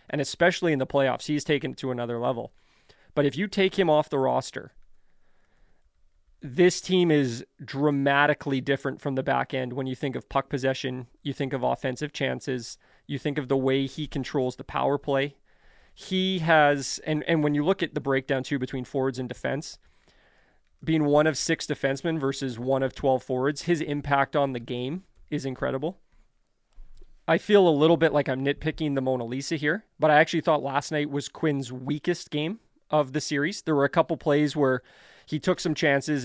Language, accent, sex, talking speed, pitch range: English, American, male, 190 wpm, 135-155 Hz